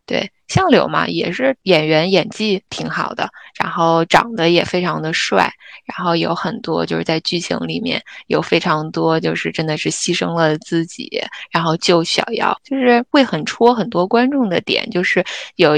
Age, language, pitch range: 20-39, Chinese, 165-205 Hz